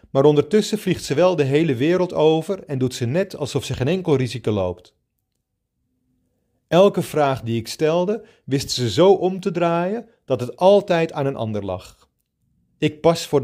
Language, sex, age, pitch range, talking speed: Dutch, male, 40-59, 125-175 Hz, 180 wpm